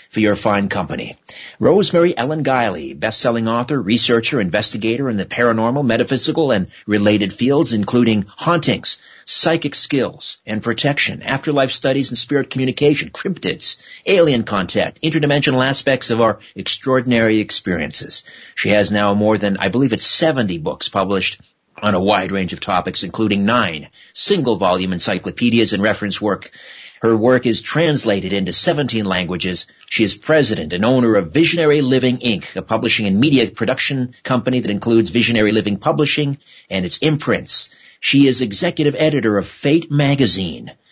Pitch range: 110-145 Hz